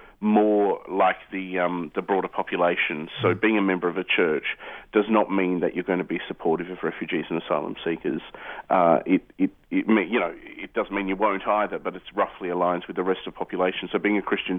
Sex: male